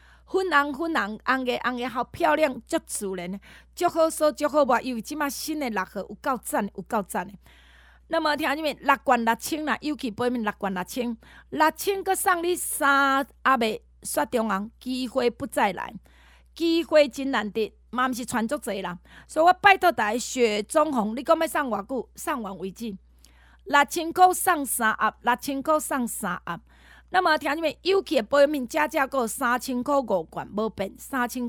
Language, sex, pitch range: Chinese, female, 215-295 Hz